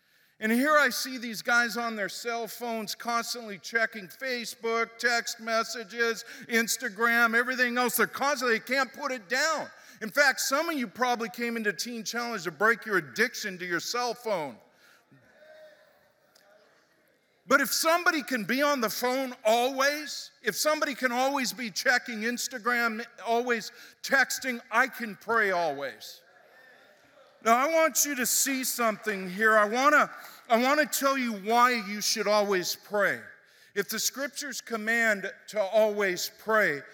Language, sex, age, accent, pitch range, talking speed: English, male, 50-69, American, 210-255 Hz, 150 wpm